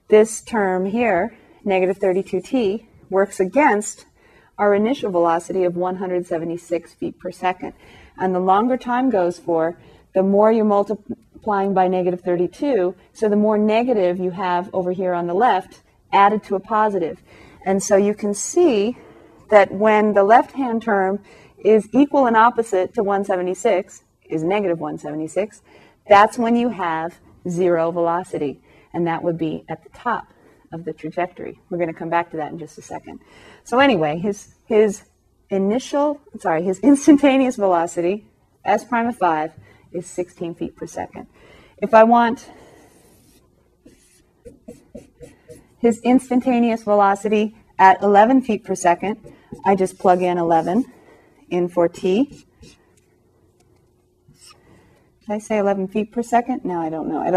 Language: English